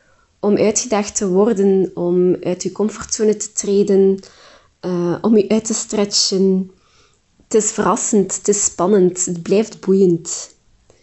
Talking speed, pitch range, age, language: 135 wpm, 185-225 Hz, 20-39, Dutch